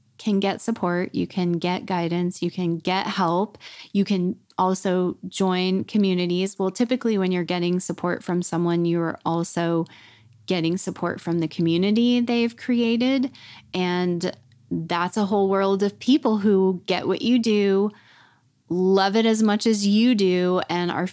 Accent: American